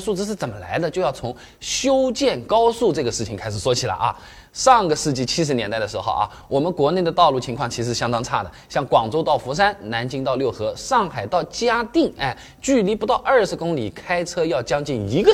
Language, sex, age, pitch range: Chinese, male, 20-39, 125-205 Hz